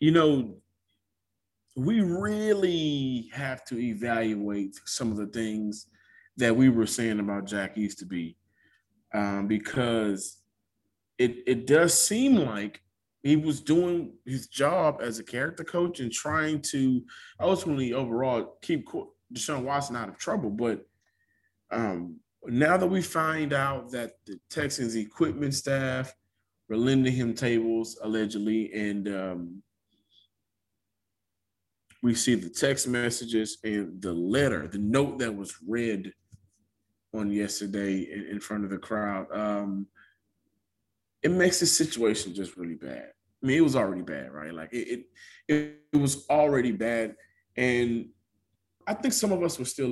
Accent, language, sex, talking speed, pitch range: American, English, male, 140 wpm, 105-135 Hz